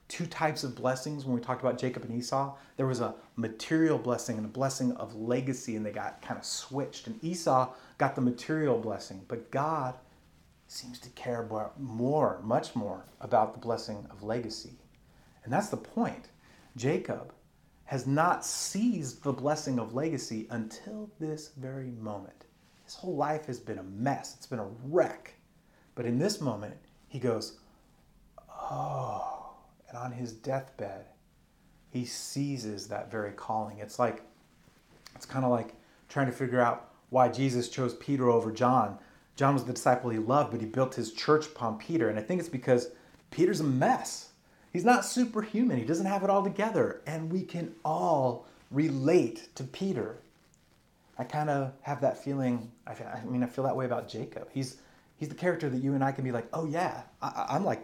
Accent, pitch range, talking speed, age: American, 120-150 Hz, 175 wpm, 30-49